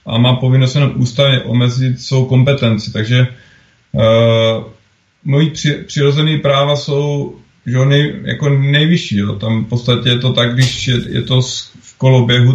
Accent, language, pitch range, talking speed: native, Czech, 115-130 Hz, 155 wpm